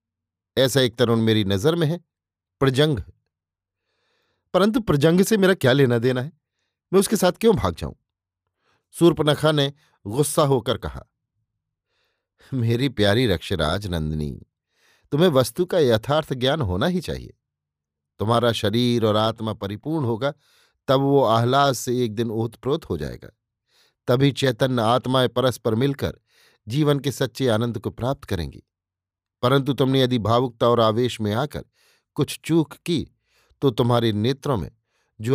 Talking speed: 140 wpm